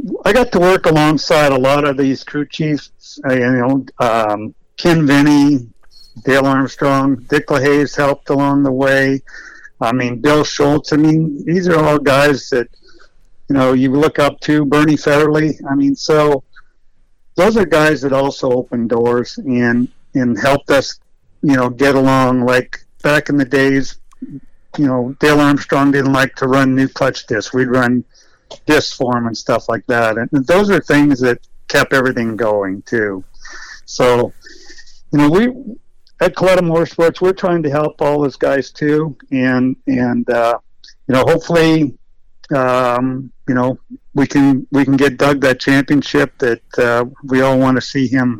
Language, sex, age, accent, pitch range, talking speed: English, male, 60-79, American, 125-150 Hz, 165 wpm